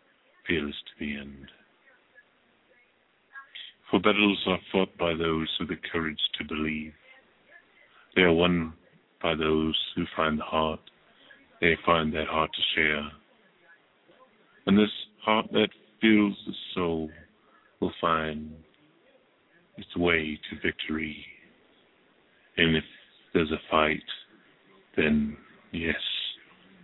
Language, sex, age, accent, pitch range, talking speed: English, male, 50-69, American, 75-85 Hz, 110 wpm